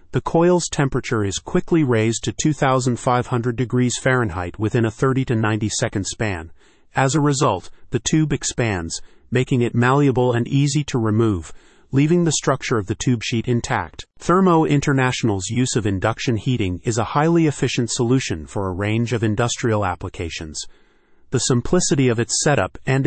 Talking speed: 160 wpm